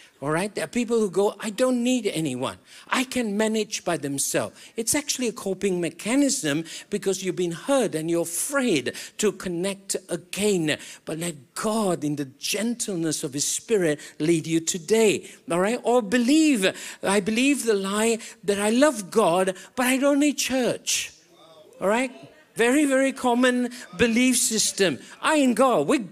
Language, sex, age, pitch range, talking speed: English, male, 50-69, 170-250 Hz, 165 wpm